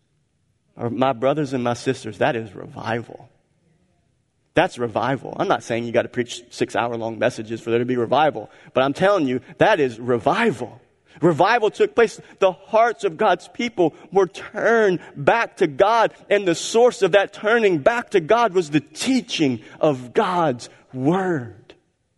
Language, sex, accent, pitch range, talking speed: English, male, American, 125-165 Hz, 165 wpm